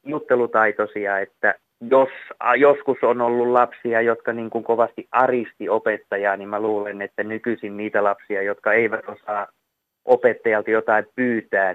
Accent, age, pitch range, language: native, 20-39, 110-125 Hz, Finnish